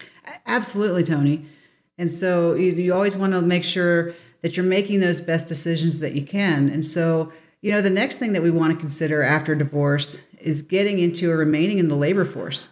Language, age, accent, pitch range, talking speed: English, 40-59, American, 150-180 Hz, 205 wpm